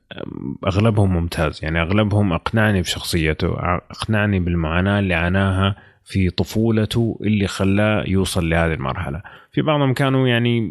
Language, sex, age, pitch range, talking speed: Arabic, male, 30-49, 85-105 Hz, 120 wpm